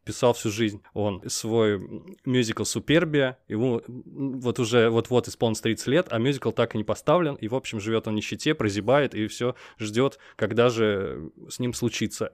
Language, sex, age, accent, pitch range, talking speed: Russian, male, 20-39, native, 110-135 Hz, 175 wpm